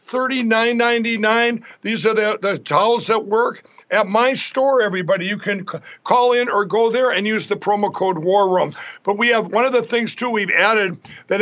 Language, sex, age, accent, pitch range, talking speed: English, male, 60-79, American, 195-235 Hz, 195 wpm